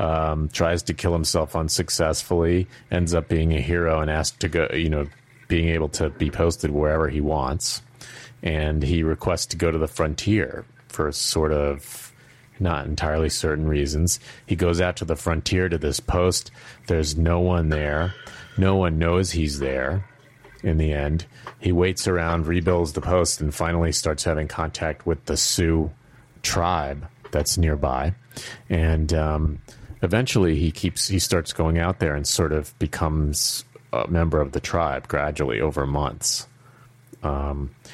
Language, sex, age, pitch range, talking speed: English, male, 30-49, 75-90 Hz, 160 wpm